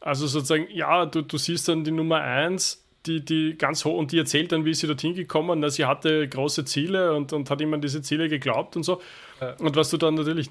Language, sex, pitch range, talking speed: German, male, 145-180 Hz, 245 wpm